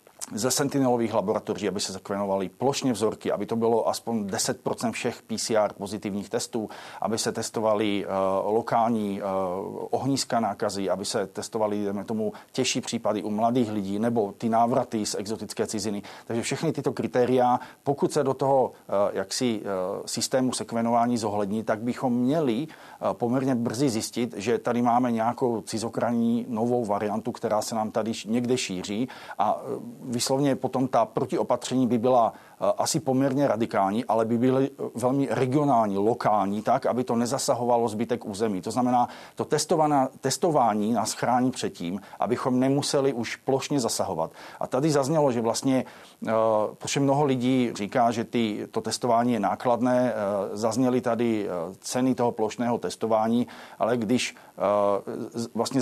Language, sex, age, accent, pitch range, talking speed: Czech, male, 40-59, native, 110-130 Hz, 135 wpm